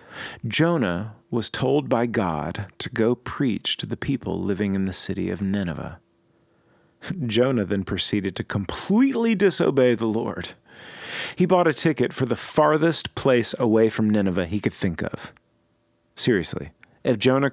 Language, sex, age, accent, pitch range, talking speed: English, male, 40-59, American, 110-155 Hz, 145 wpm